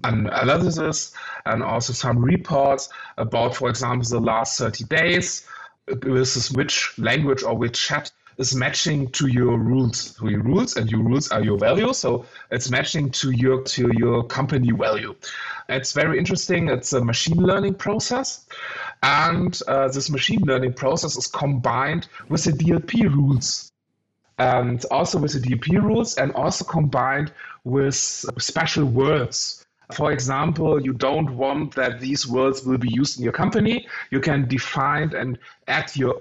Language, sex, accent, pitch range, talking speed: English, male, German, 125-155 Hz, 155 wpm